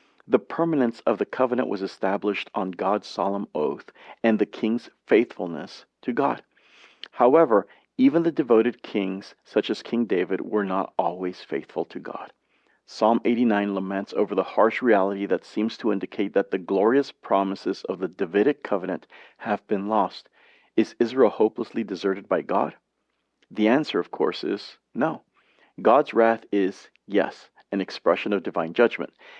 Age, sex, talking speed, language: 40-59, male, 155 wpm, English